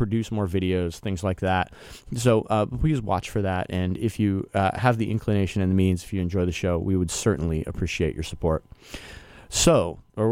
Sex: male